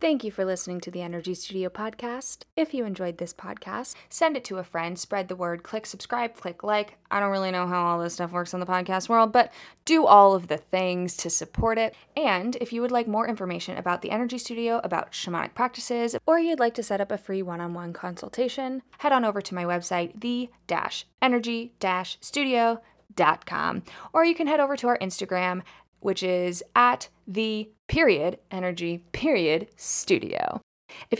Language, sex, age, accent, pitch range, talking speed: English, female, 20-39, American, 180-235 Hz, 185 wpm